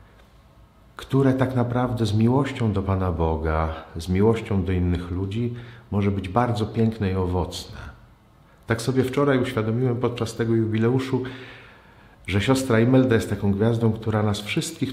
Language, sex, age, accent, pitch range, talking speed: Polish, male, 50-69, native, 90-115 Hz, 140 wpm